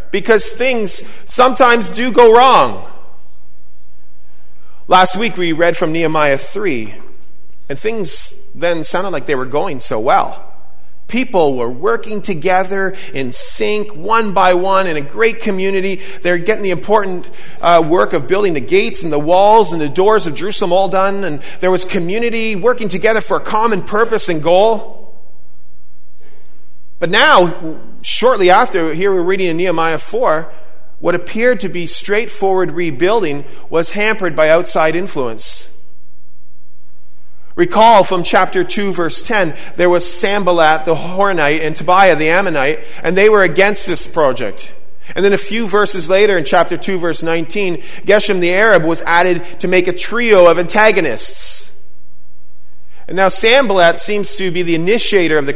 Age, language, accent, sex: 40-59, English, American, male